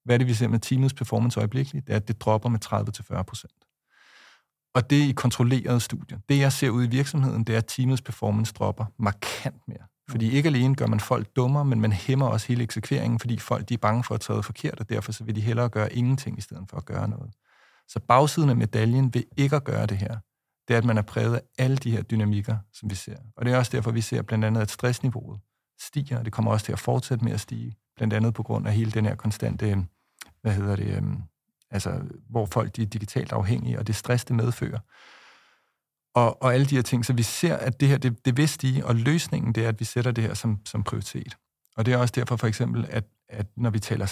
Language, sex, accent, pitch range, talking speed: Danish, male, native, 110-130 Hz, 250 wpm